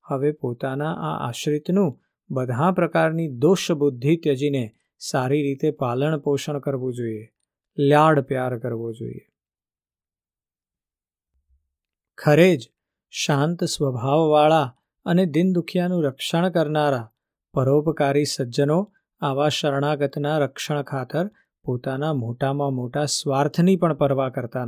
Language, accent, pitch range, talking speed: Gujarati, native, 135-175 Hz, 95 wpm